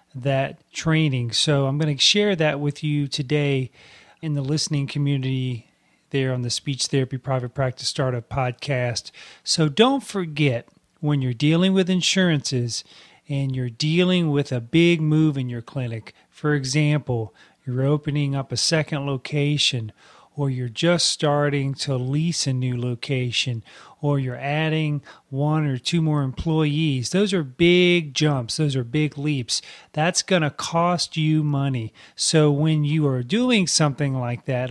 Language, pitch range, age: English, 135-170 Hz, 40-59